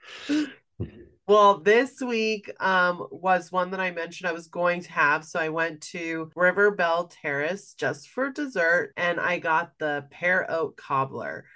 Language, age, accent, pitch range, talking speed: English, 30-49, American, 150-210 Hz, 160 wpm